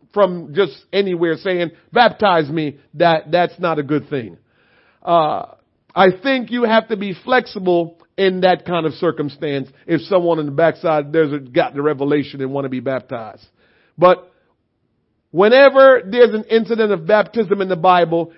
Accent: American